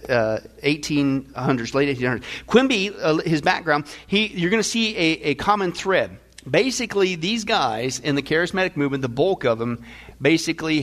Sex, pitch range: male, 135-180 Hz